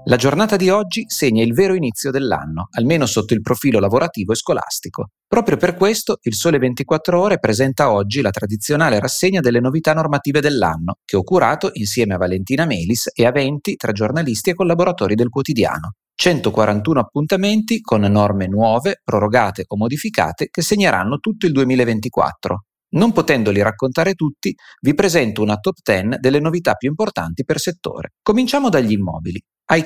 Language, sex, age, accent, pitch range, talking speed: Italian, male, 30-49, native, 110-175 Hz, 160 wpm